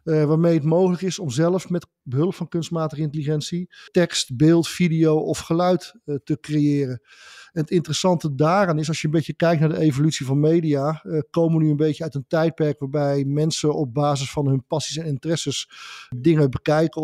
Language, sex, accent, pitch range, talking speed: Dutch, male, Dutch, 145-170 Hz, 190 wpm